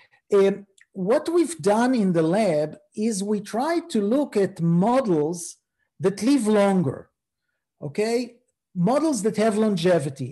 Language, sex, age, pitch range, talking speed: English, male, 50-69, 175-235 Hz, 130 wpm